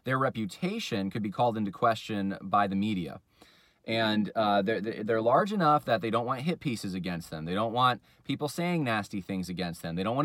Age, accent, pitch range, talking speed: 30-49, American, 105-150 Hz, 210 wpm